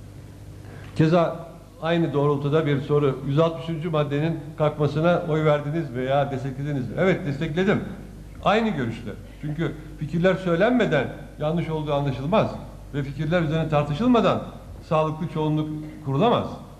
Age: 60-79